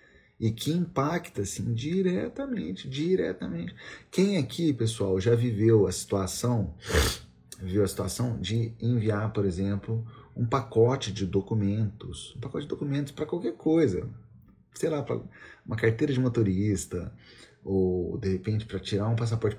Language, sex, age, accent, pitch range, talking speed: Portuguese, male, 40-59, Brazilian, 95-120 Hz, 140 wpm